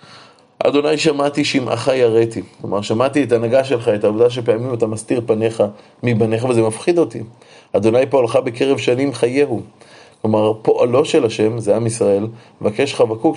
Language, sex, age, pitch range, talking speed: Hebrew, male, 30-49, 115-135 Hz, 150 wpm